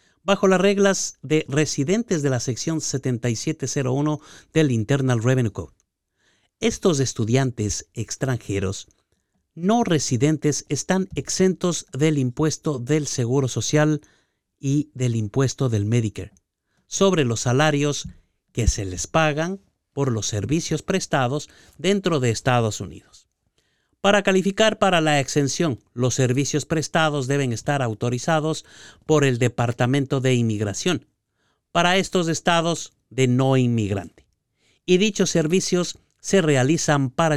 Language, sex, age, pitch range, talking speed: Spanish, male, 50-69, 120-160 Hz, 115 wpm